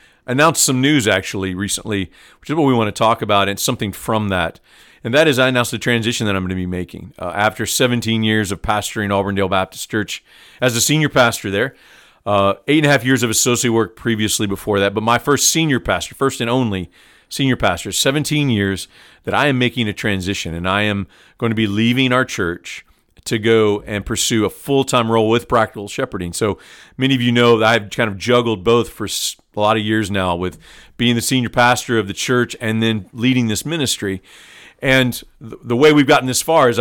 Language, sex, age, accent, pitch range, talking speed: English, male, 40-59, American, 105-125 Hz, 215 wpm